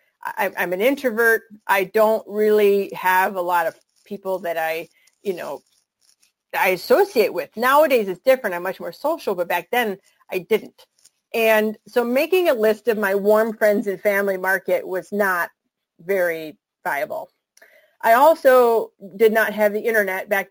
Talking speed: 160 wpm